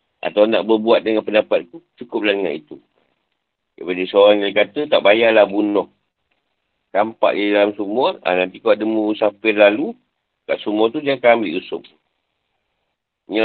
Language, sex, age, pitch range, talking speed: Malay, male, 50-69, 110-120 Hz, 145 wpm